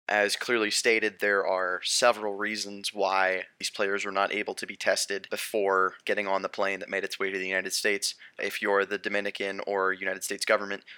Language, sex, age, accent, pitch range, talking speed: English, male, 20-39, American, 95-110 Hz, 200 wpm